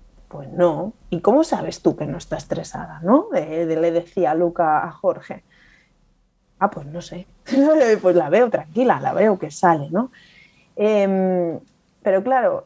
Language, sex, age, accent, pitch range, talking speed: Spanish, female, 30-49, Spanish, 175-225 Hz, 155 wpm